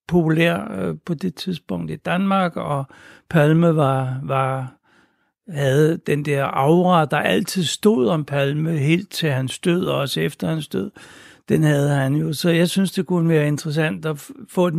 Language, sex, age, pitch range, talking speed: Danish, male, 60-79, 145-175 Hz, 175 wpm